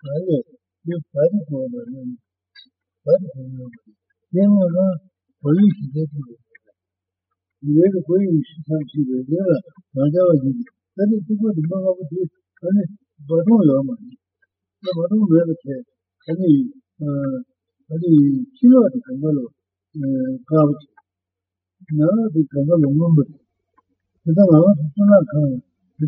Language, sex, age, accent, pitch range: Italian, male, 60-79, Indian, 135-185 Hz